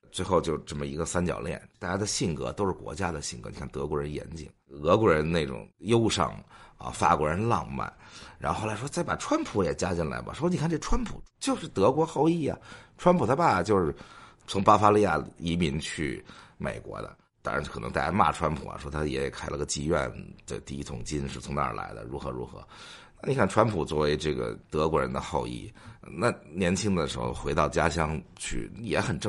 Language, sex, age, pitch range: English, male, 50-69, 70-95 Hz